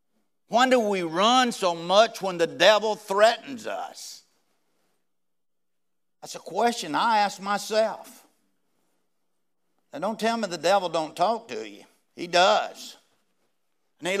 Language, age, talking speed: English, 60-79, 130 wpm